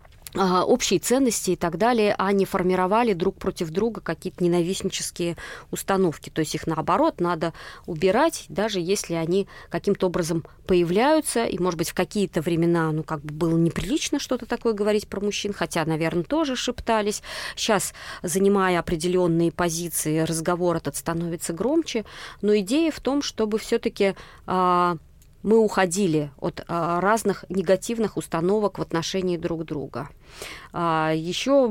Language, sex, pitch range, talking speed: Russian, female, 165-205 Hz, 140 wpm